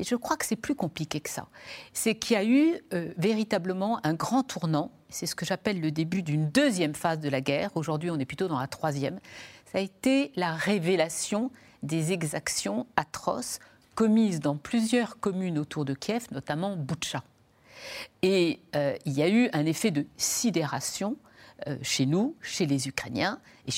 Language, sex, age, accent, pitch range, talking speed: French, female, 60-79, French, 155-220 Hz, 180 wpm